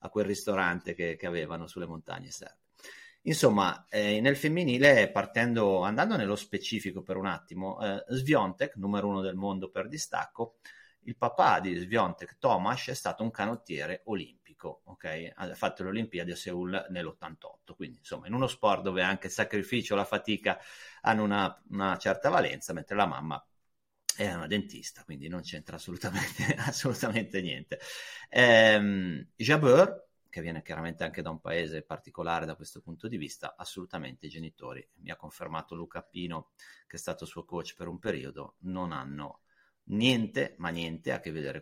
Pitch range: 85-110 Hz